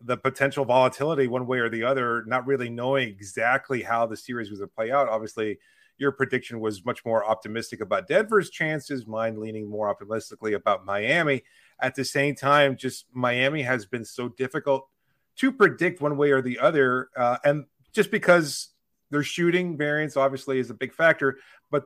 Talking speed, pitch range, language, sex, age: 180 wpm, 115-140 Hz, English, male, 30-49